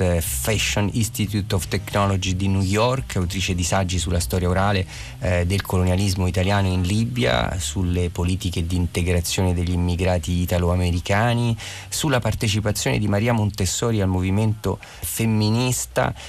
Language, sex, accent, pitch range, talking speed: Italian, male, native, 85-110 Hz, 125 wpm